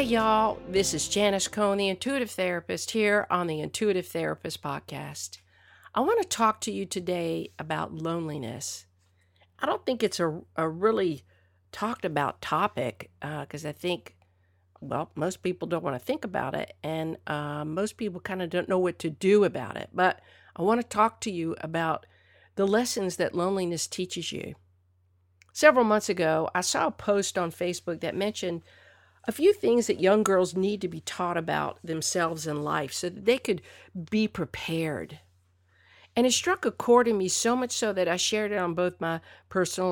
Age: 50-69